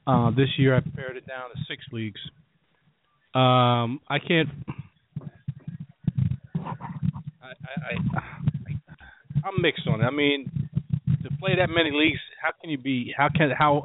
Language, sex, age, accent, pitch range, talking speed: English, male, 40-59, American, 115-150 Hz, 150 wpm